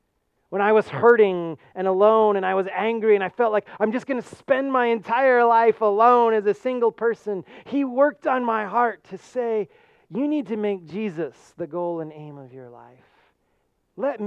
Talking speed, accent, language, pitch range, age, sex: 200 wpm, American, English, 130-195 Hz, 30-49, male